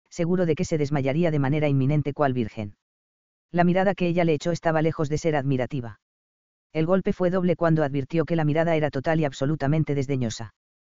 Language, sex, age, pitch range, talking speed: English, female, 40-59, 130-170 Hz, 195 wpm